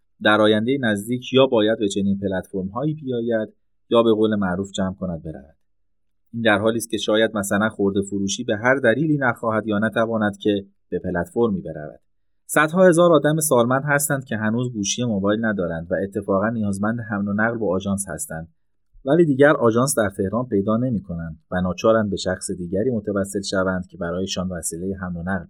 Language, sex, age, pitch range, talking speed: Persian, male, 30-49, 95-115 Hz, 180 wpm